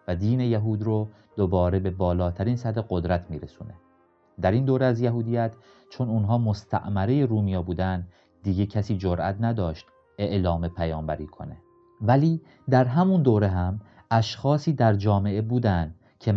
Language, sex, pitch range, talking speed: Persian, male, 95-120 Hz, 135 wpm